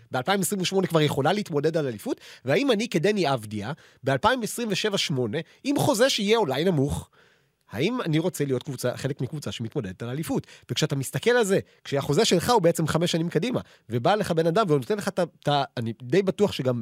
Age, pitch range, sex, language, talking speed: 30-49, 140-210 Hz, male, Hebrew, 170 wpm